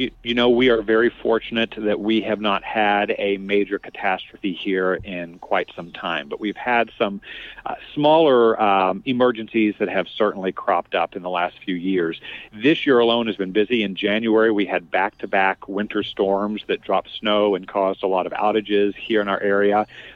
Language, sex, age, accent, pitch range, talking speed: English, male, 40-59, American, 100-120 Hz, 190 wpm